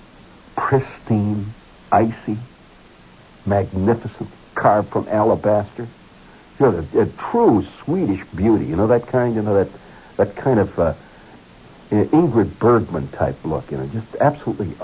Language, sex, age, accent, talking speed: English, male, 60-79, American, 130 wpm